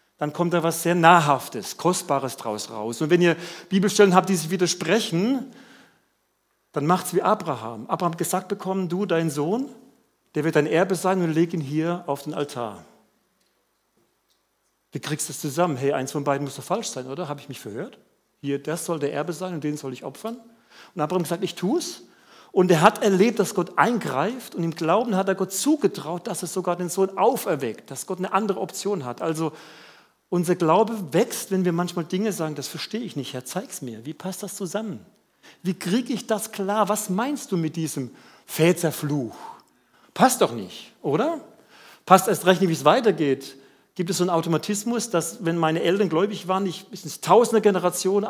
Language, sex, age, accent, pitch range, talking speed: German, male, 40-59, German, 155-200 Hz, 200 wpm